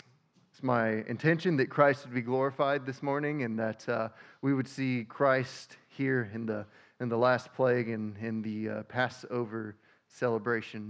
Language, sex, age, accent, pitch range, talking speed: English, male, 20-39, American, 110-130 Hz, 165 wpm